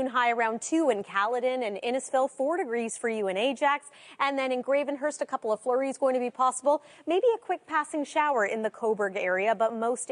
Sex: female